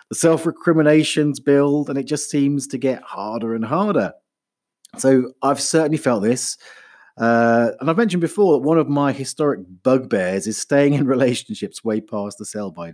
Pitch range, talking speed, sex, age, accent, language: 120-165 Hz, 165 wpm, male, 30-49, British, English